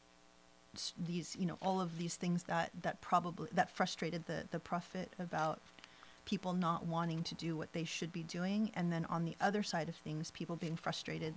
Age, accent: 30-49, American